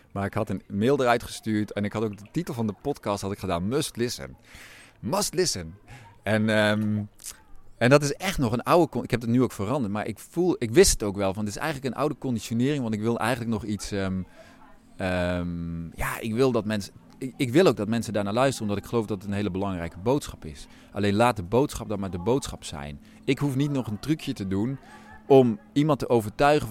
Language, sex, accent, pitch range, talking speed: Dutch, male, Dutch, 95-120 Hz, 235 wpm